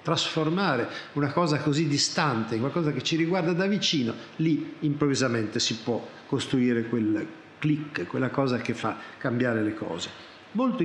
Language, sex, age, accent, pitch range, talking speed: Italian, male, 50-69, native, 125-165 Hz, 150 wpm